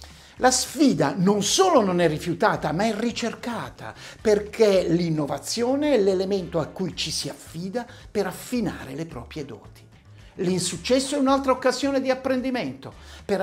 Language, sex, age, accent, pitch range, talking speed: Italian, male, 60-79, native, 150-235 Hz, 140 wpm